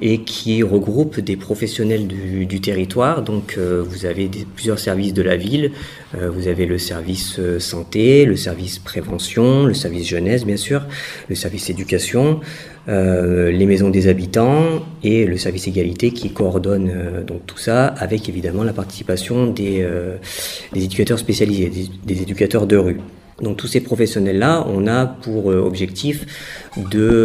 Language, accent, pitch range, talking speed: French, French, 95-115 Hz, 155 wpm